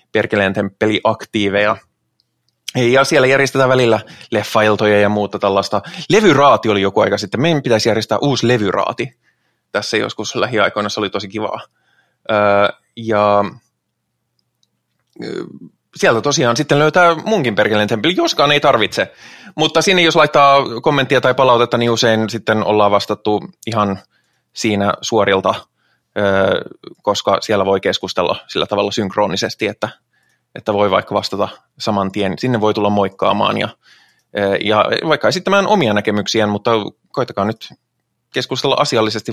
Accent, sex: native, male